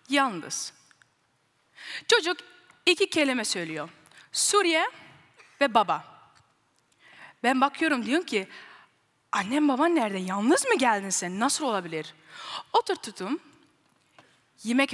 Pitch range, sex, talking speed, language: 190-285 Hz, female, 90 wpm, Turkish